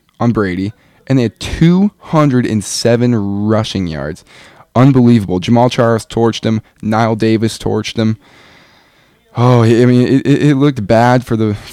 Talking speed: 135 wpm